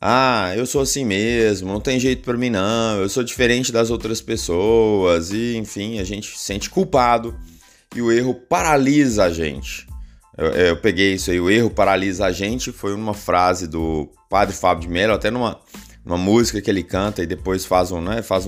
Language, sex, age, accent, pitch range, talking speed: Portuguese, male, 20-39, Brazilian, 95-135 Hz, 200 wpm